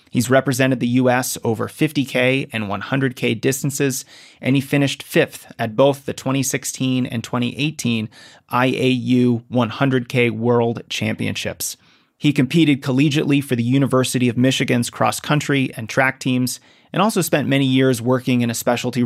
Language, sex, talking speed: English, male, 140 wpm